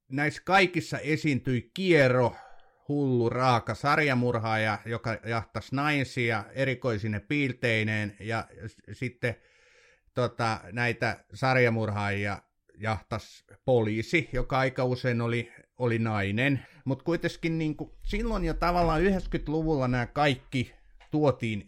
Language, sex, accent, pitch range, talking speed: Finnish, male, native, 110-145 Hz, 100 wpm